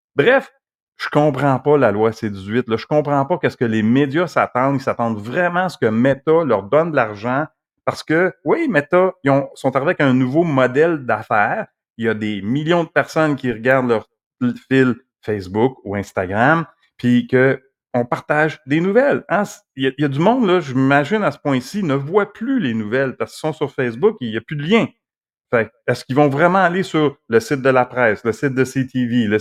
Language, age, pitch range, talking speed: French, 40-59, 120-155 Hz, 220 wpm